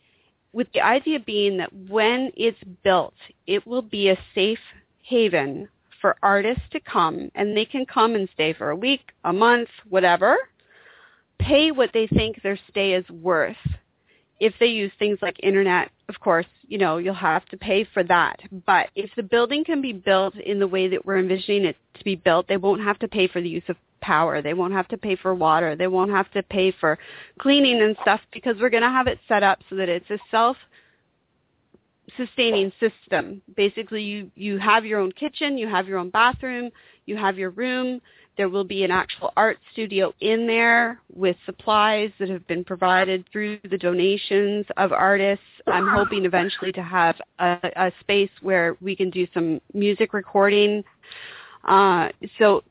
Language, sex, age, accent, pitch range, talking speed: English, female, 40-59, American, 185-225 Hz, 185 wpm